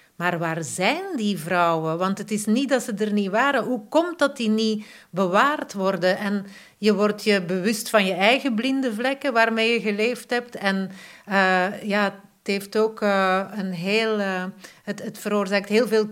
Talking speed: 150 wpm